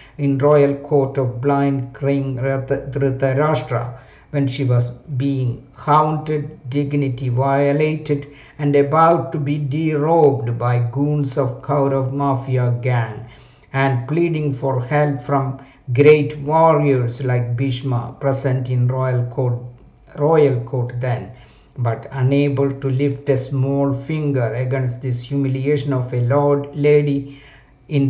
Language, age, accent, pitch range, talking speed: English, 60-79, Indian, 130-145 Hz, 120 wpm